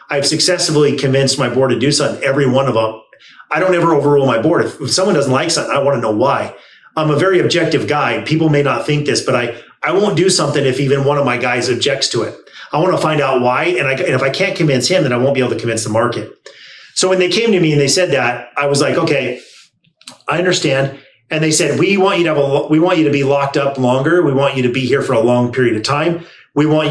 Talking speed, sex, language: 275 wpm, male, English